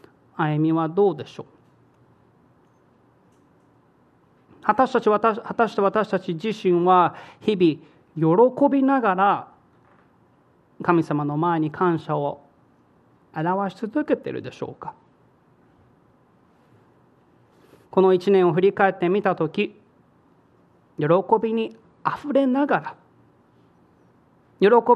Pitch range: 145-200 Hz